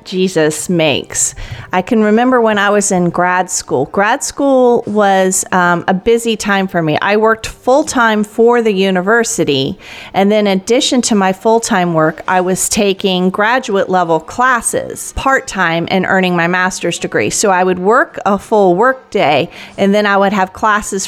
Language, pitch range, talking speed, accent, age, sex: English, 180-230 Hz, 180 wpm, American, 40-59, female